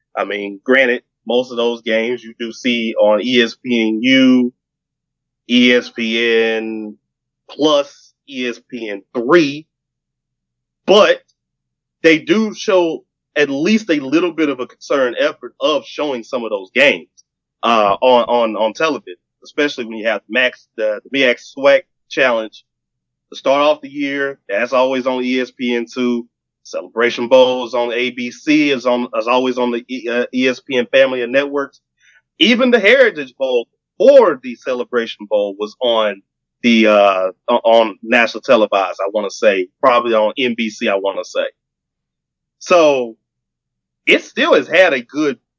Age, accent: 30-49, American